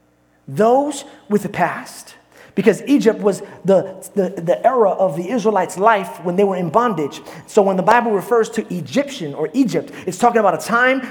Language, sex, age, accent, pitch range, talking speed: English, male, 30-49, American, 175-265 Hz, 185 wpm